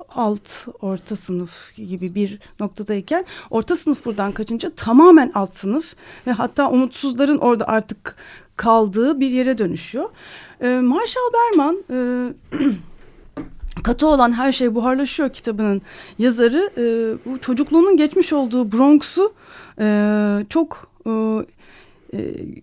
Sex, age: female, 40-59